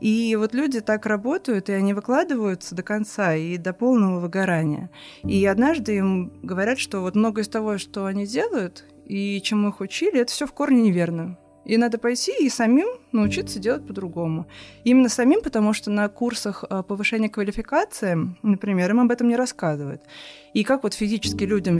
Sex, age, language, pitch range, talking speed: female, 20-39, Russian, 190-230 Hz, 170 wpm